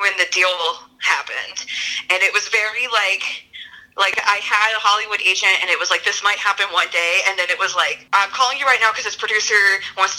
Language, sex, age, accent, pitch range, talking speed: English, female, 20-39, American, 175-220 Hz, 230 wpm